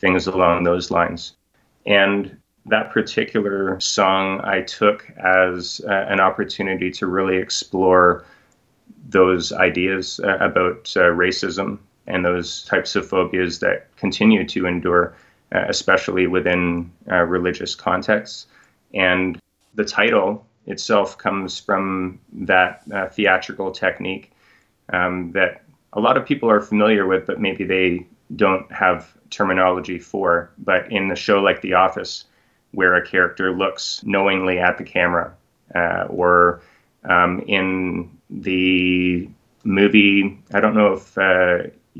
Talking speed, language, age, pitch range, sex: 130 wpm, English, 30-49, 90-95 Hz, male